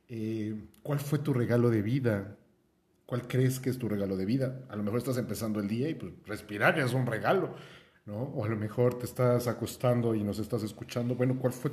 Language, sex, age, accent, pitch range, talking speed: Spanish, male, 40-59, Mexican, 105-125 Hz, 220 wpm